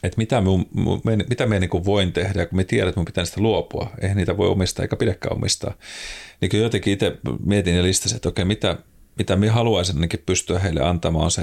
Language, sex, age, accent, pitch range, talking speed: Finnish, male, 30-49, native, 85-100 Hz, 200 wpm